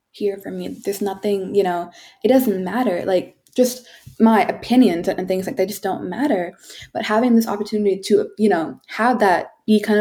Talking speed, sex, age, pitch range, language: 190 wpm, female, 20-39, 180-215 Hz, English